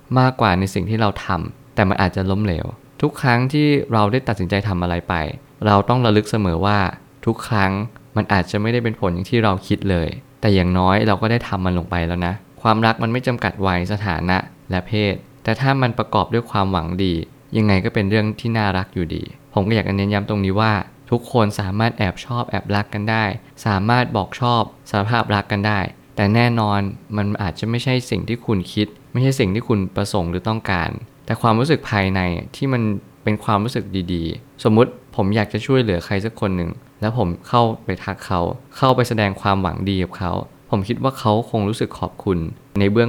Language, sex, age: Thai, male, 20-39